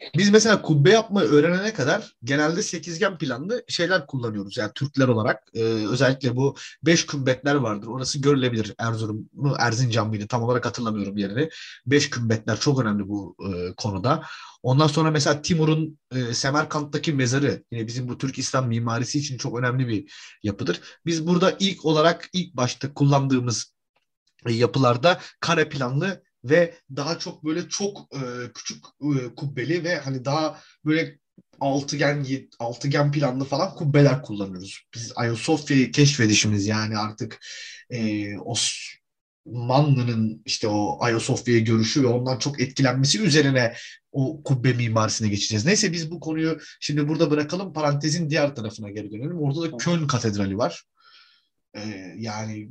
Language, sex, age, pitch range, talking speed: Turkish, male, 30-49, 115-155 Hz, 140 wpm